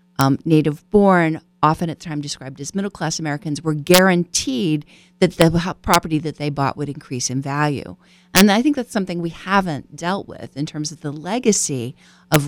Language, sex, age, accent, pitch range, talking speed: English, female, 40-59, American, 140-175 Hz, 180 wpm